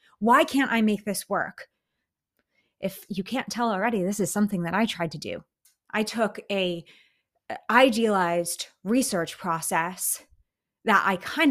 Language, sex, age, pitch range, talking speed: English, female, 30-49, 190-235 Hz, 145 wpm